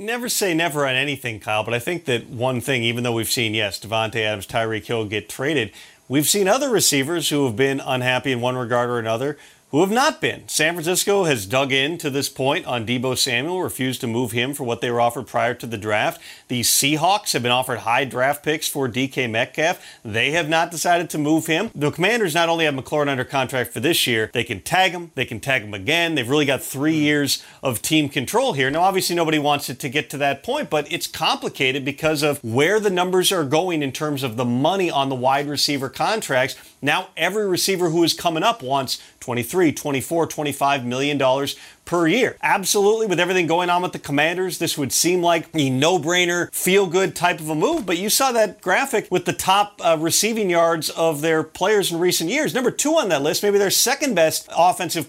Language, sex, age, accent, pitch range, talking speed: English, male, 40-59, American, 135-200 Hz, 215 wpm